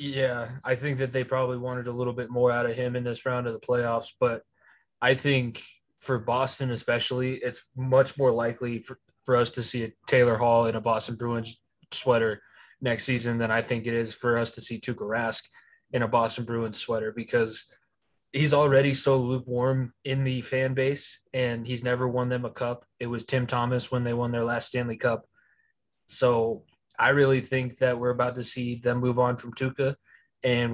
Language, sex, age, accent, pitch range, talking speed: English, male, 20-39, American, 120-130 Hz, 200 wpm